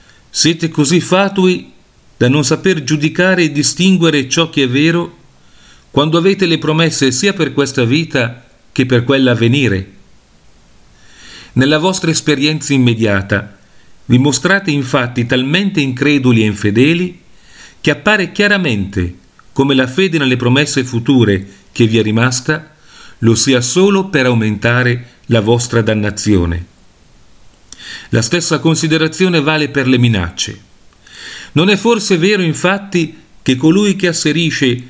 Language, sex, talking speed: Italian, male, 125 wpm